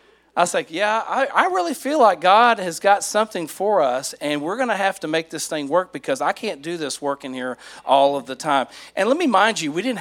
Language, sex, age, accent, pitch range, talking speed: English, male, 40-59, American, 165-235 Hz, 265 wpm